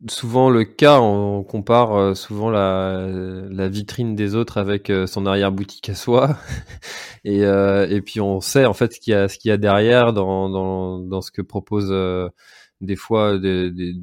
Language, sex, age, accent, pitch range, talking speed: French, male, 20-39, French, 95-115 Hz, 185 wpm